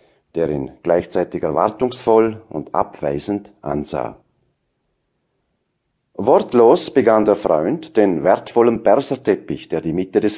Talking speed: 105 wpm